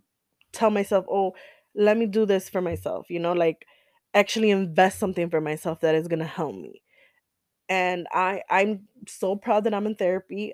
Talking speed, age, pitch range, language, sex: 180 wpm, 20-39, 180-205 Hz, English, female